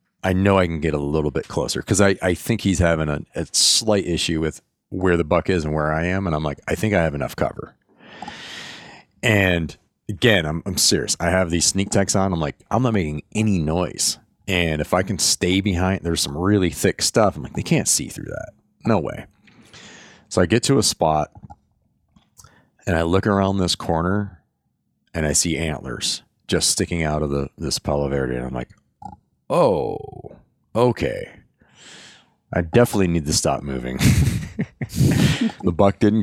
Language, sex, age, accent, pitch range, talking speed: English, male, 40-59, American, 75-95 Hz, 185 wpm